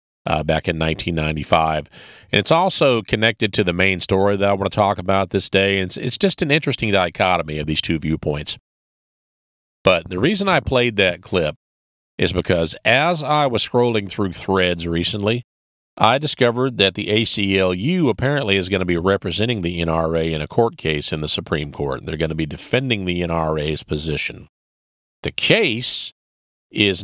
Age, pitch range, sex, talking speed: 40-59, 80-105 Hz, male, 175 wpm